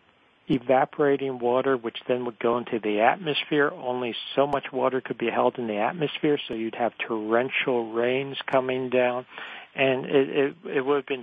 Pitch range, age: 120-140 Hz, 50-69